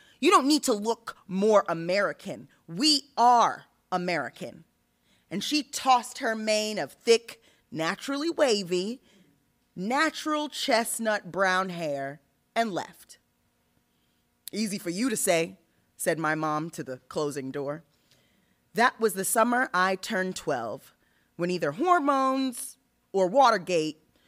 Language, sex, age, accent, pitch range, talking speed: English, female, 20-39, American, 155-225 Hz, 120 wpm